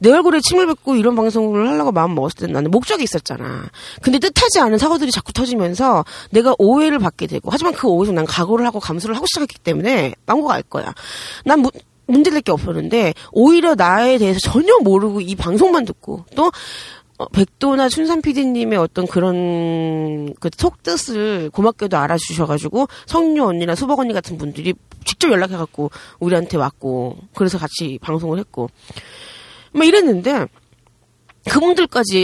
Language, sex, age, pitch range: Korean, female, 30-49, 170-270 Hz